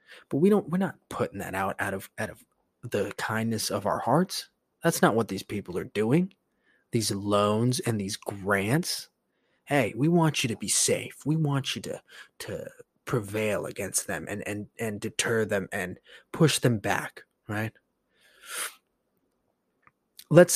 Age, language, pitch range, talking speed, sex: 20-39, English, 105-145 Hz, 160 wpm, male